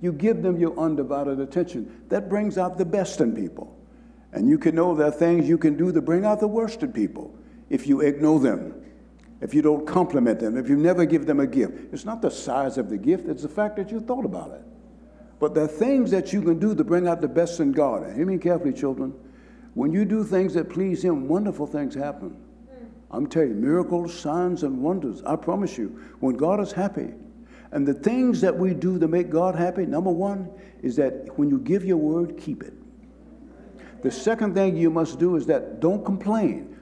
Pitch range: 160-230 Hz